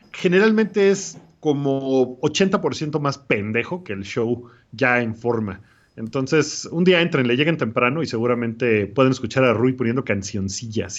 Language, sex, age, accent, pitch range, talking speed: Spanish, male, 40-59, Mexican, 115-155 Hz, 145 wpm